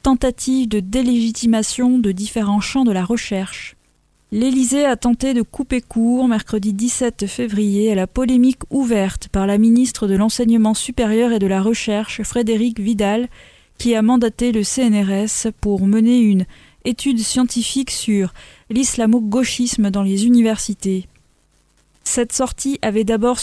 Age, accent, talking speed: 20-39, French, 135 wpm